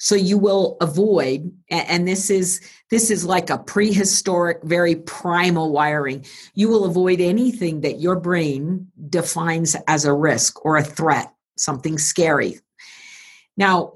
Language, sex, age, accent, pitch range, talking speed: English, female, 50-69, American, 160-210 Hz, 140 wpm